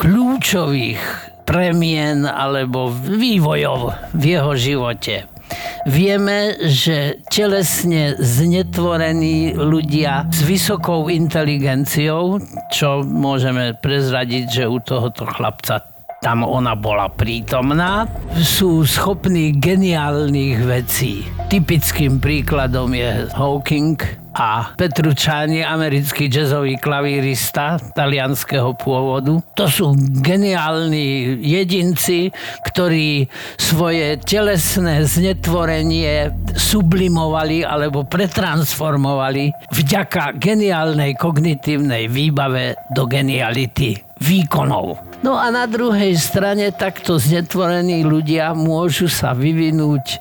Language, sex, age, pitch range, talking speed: Slovak, male, 50-69, 135-175 Hz, 85 wpm